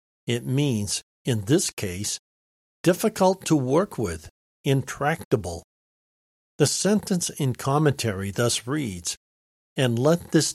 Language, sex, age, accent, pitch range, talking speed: English, male, 60-79, American, 110-160 Hz, 110 wpm